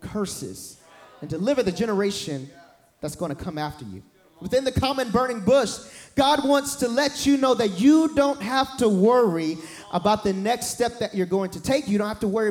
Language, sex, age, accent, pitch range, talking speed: English, male, 30-49, American, 170-230 Hz, 200 wpm